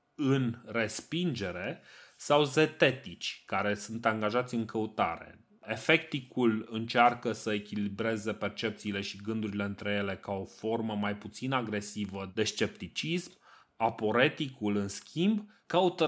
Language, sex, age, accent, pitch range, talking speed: Romanian, male, 30-49, native, 105-120 Hz, 110 wpm